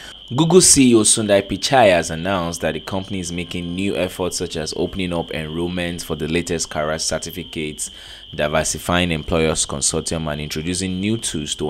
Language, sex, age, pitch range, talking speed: English, male, 20-39, 80-95 Hz, 160 wpm